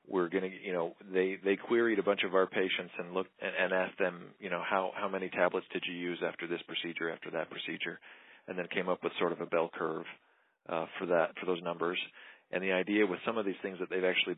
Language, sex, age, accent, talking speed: English, male, 40-59, American, 250 wpm